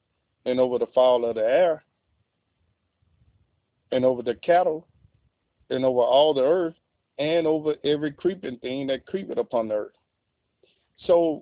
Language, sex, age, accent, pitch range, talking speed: English, male, 40-59, American, 125-170 Hz, 140 wpm